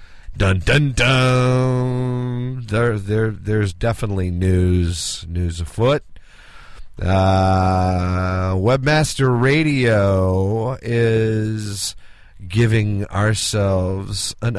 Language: English